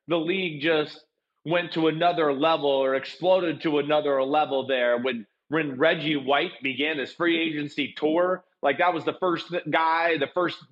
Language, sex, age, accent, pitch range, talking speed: English, male, 30-49, American, 155-195 Hz, 170 wpm